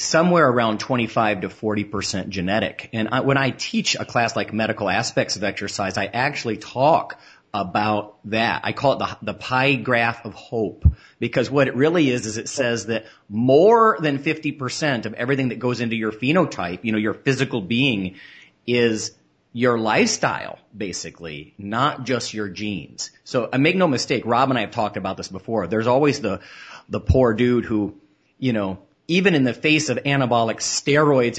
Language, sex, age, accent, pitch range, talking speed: English, male, 40-59, American, 105-130 Hz, 180 wpm